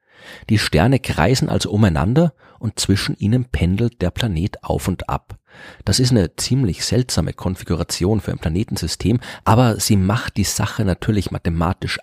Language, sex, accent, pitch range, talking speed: German, male, German, 90-120 Hz, 150 wpm